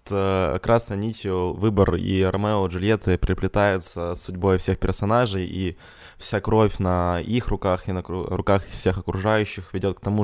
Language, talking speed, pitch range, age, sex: Ukrainian, 150 wpm, 90-100 Hz, 20-39, male